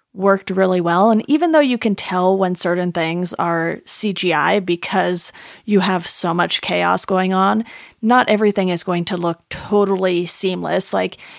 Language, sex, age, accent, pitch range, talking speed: English, female, 30-49, American, 175-215 Hz, 165 wpm